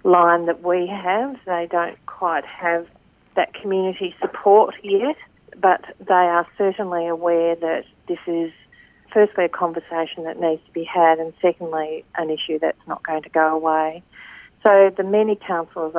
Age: 40-59